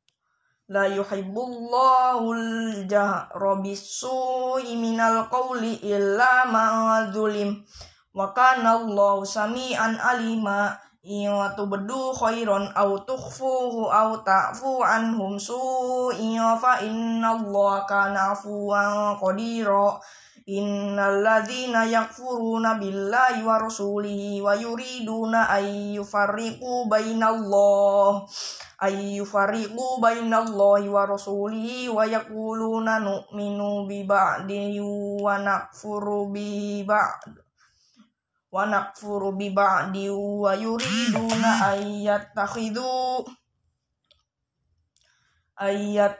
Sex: female